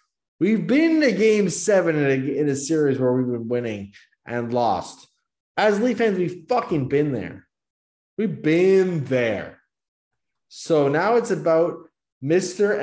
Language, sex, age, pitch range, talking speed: English, male, 20-39, 130-180 Hz, 140 wpm